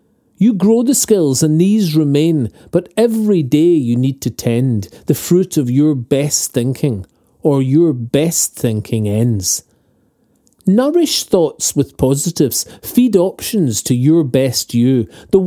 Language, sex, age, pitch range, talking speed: English, male, 40-59, 130-195 Hz, 140 wpm